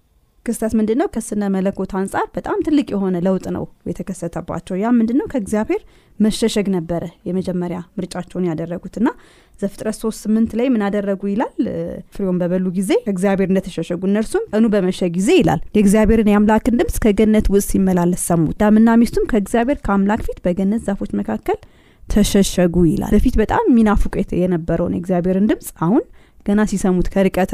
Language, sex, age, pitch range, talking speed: Amharic, female, 20-39, 180-220 Hz, 120 wpm